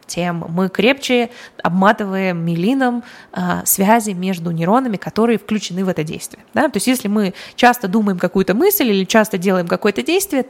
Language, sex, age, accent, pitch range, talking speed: Russian, female, 20-39, native, 185-245 Hz, 160 wpm